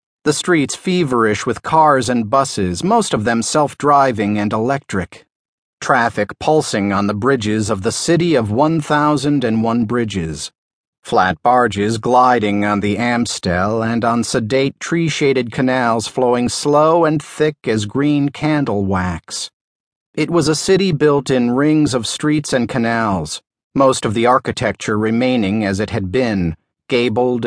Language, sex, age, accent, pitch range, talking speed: English, male, 40-59, American, 110-150 Hz, 145 wpm